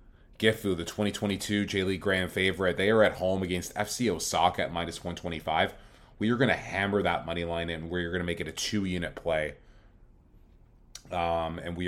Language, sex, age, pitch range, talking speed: English, male, 30-49, 85-100 Hz, 190 wpm